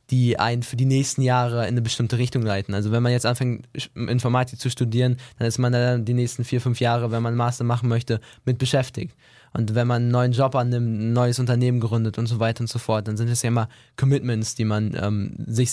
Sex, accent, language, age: male, German, German, 20-39